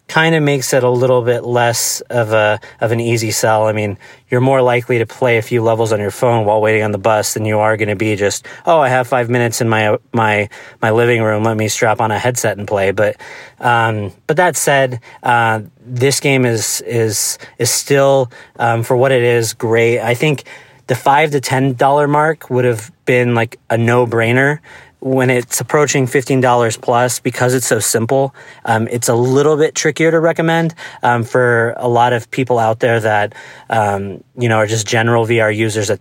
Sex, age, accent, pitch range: male, 30-49, American, 115-130 Hz